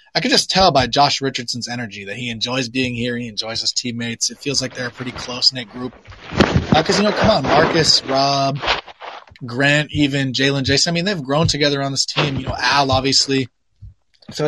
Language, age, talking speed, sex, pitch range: English, 20-39, 205 wpm, male, 120-145 Hz